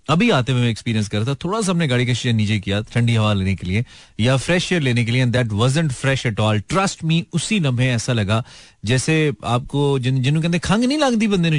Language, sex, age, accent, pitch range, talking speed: Hindi, male, 30-49, native, 105-140 Hz, 230 wpm